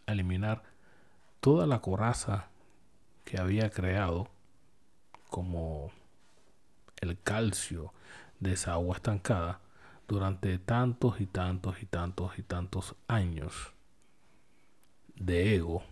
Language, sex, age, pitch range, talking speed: Spanish, male, 40-59, 90-110 Hz, 95 wpm